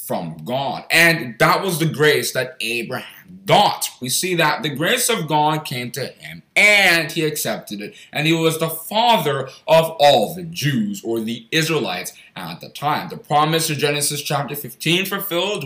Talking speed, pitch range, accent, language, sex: 175 wpm, 130-175 Hz, American, English, male